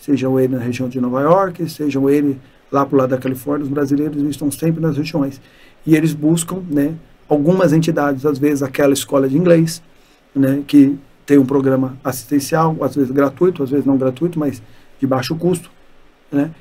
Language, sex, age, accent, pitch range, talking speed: Portuguese, male, 40-59, Brazilian, 135-155 Hz, 185 wpm